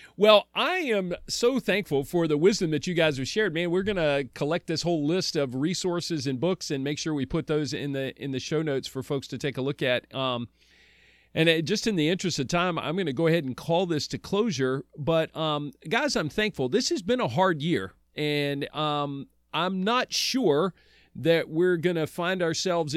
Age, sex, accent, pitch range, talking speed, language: 40-59, male, American, 145-185 Hz, 220 wpm, English